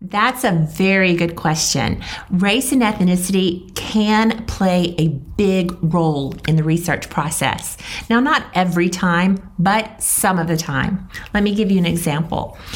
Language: English